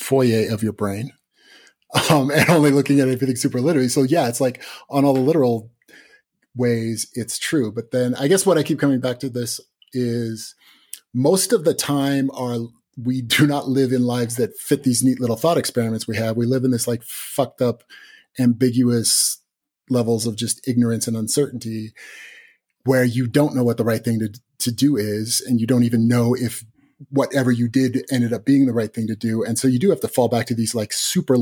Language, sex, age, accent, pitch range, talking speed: English, male, 30-49, American, 115-135 Hz, 210 wpm